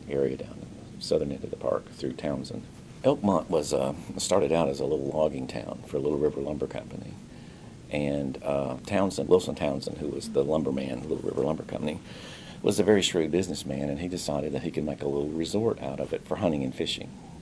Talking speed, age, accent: 210 wpm, 50-69, American